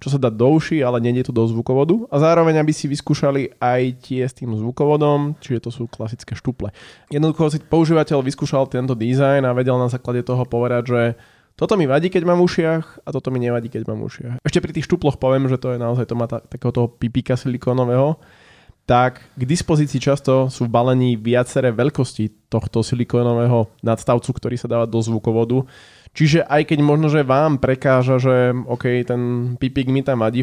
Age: 20-39